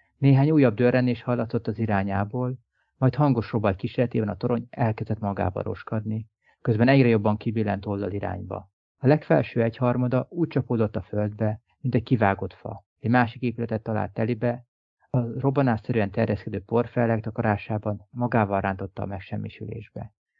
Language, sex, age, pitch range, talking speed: Hungarian, male, 30-49, 105-125 Hz, 130 wpm